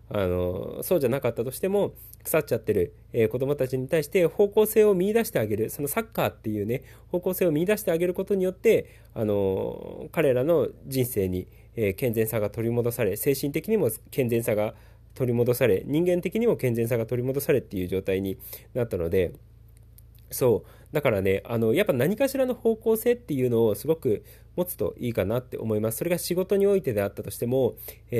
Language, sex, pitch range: Japanese, male, 110-170 Hz